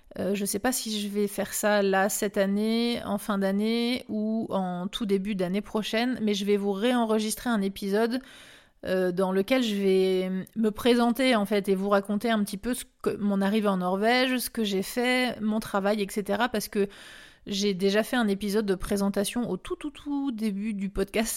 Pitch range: 195-230 Hz